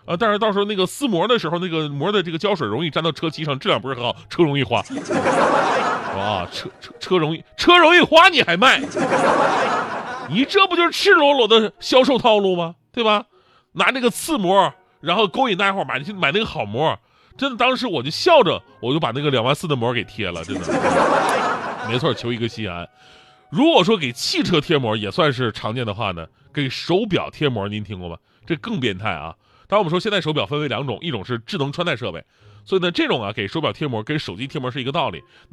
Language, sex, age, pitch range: Chinese, male, 30-49, 135-225 Hz